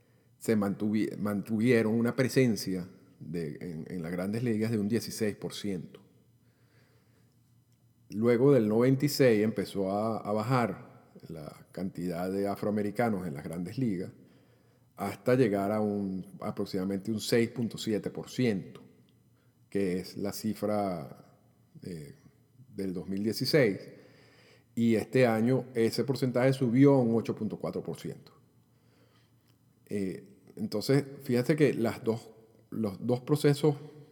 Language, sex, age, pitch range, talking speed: Spanish, male, 50-69, 105-130 Hz, 105 wpm